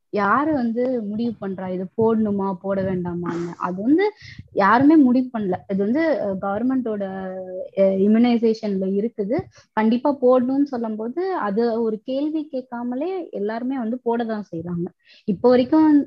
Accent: native